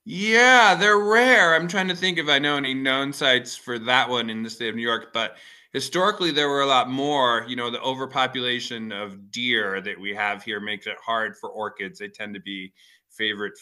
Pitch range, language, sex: 105-130 Hz, English, male